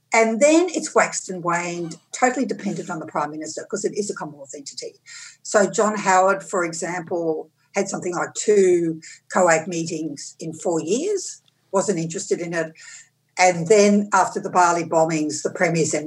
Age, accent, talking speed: 60-79, Australian, 170 wpm